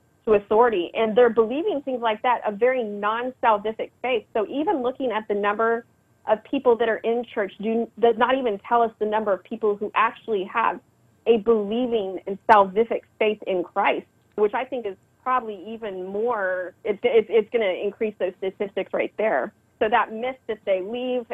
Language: English